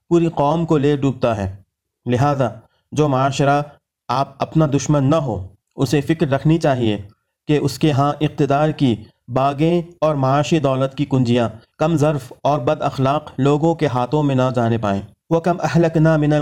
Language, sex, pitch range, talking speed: Urdu, male, 130-155 Hz, 170 wpm